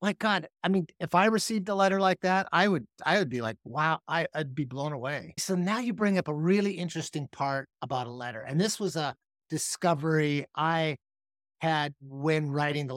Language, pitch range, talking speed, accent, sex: English, 130-175 Hz, 210 wpm, American, male